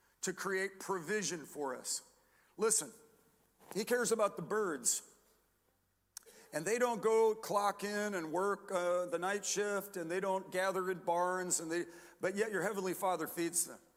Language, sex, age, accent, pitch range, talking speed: English, male, 50-69, American, 185-230 Hz, 165 wpm